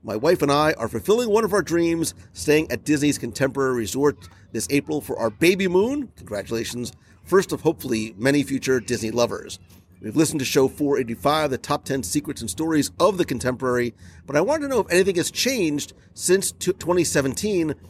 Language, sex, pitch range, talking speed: English, male, 115-165 Hz, 180 wpm